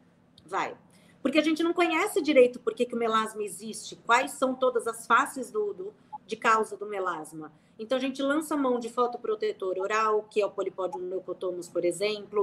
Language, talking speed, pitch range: Portuguese, 185 wpm, 200-255 Hz